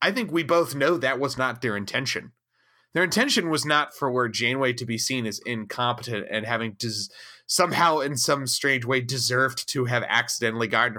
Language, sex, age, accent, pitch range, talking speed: English, male, 30-49, American, 115-145 Hz, 190 wpm